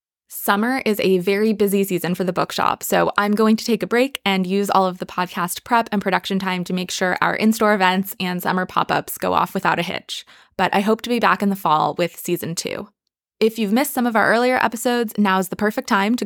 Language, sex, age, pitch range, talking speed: English, female, 20-39, 185-220 Hz, 240 wpm